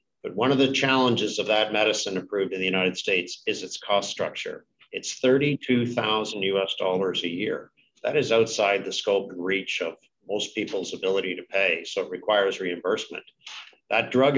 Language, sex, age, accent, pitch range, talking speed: English, male, 50-69, American, 100-140 Hz, 175 wpm